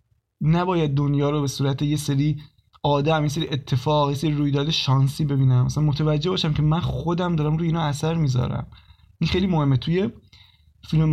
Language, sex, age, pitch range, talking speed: Persian, male, 20-39, 130-160 Hz, 175 wpm